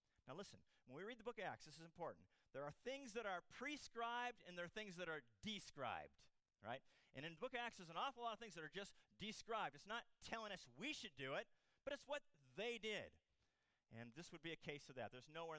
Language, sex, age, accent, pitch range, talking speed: English, male, 40-59, American, 140-225 Hz, 250 wpm